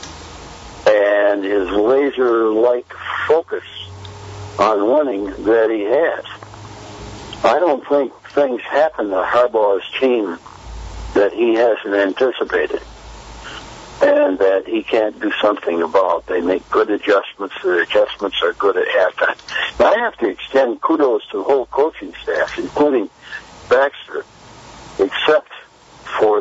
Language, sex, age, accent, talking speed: English, male, 60-79, American, 120 wpm